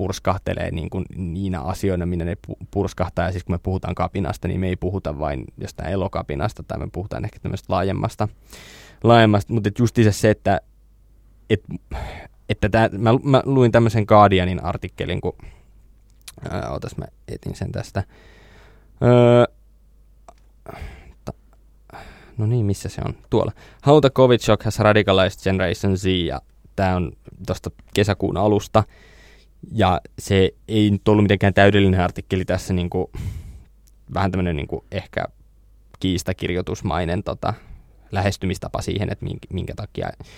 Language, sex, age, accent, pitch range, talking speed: Finnish, male, 20-39, native, 90-105 Hz, 130 wpm